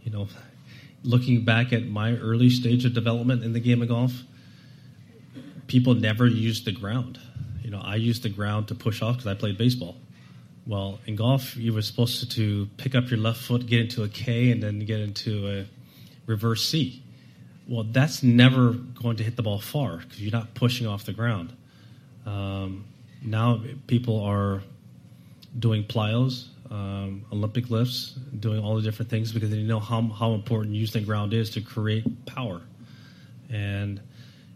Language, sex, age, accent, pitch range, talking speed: English, male, 30-49, American, 105-125 Hz, 175 wpm